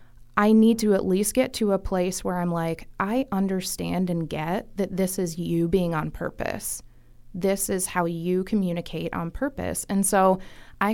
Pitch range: 170-205 Hz